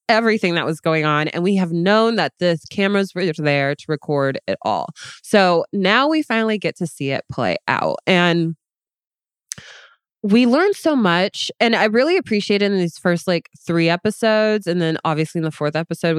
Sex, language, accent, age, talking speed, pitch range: female, English, American, 20-39, 190 wpm, 165-220 Hz